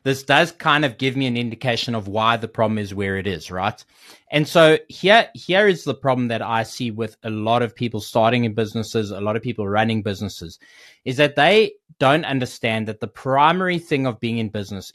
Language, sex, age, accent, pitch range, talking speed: English, male, 20-39, Australian, 115-150 Hz, 215 wpm